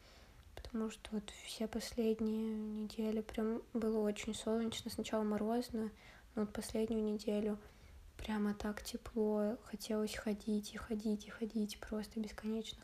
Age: 20-39